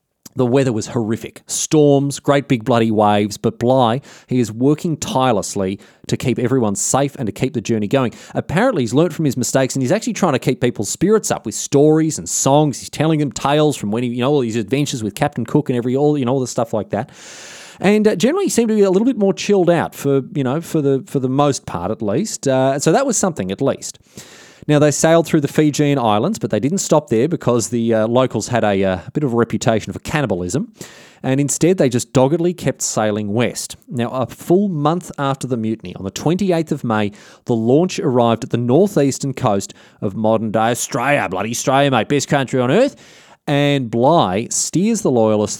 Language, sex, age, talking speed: English, male, 30-49, 220 wpm